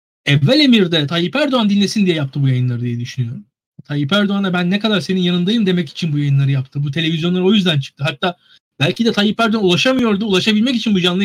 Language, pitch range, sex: Turkish, 165-230 Hz, male